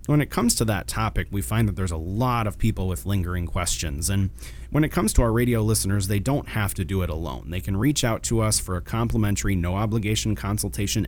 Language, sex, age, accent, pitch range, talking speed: English, male, 30-49, American, 90-120 Hz, 235 wpm